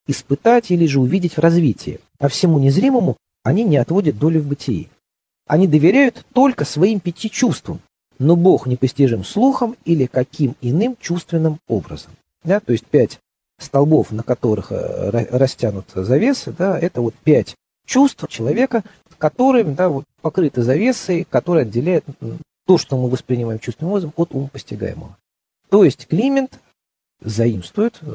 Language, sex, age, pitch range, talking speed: Russian, male, 40-59, 120-180 Hz, 145 wpm